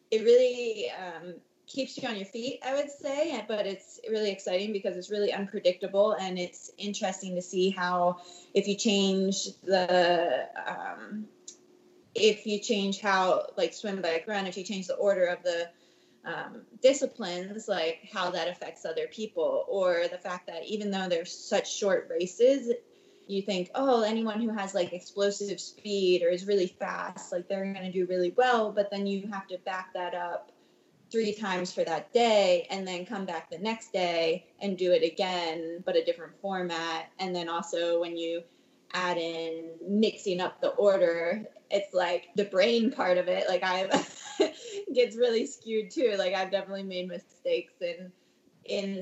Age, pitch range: 20-39, 180-220 Hz